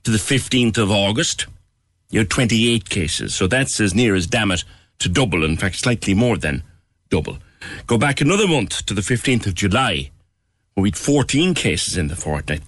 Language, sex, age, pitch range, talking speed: English, male, 60-79, 95-125 Hz, 195 wpm